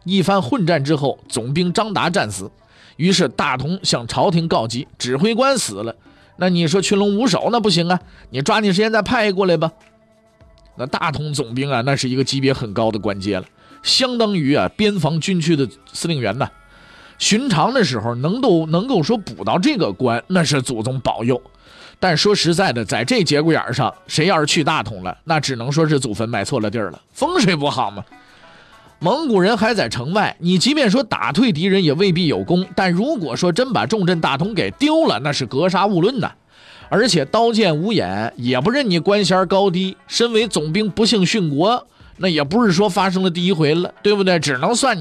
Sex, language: male, Chinese